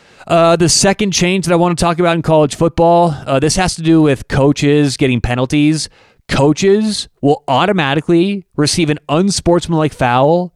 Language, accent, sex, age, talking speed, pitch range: English, American, male, 30-49, 165 wpm, 135-180 Hz